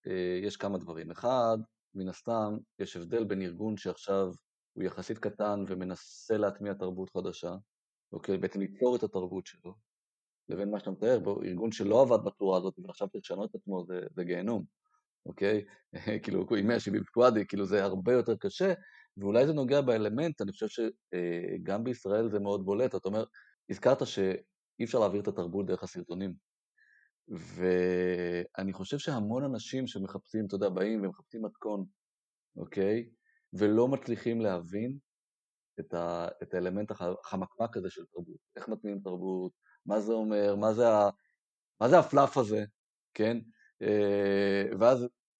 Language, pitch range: Hebrew, 95-115 Hz